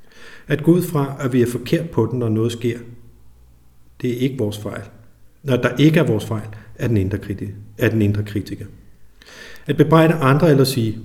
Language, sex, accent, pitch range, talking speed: Danish, male, native, 105-130 Hz, 200 wpm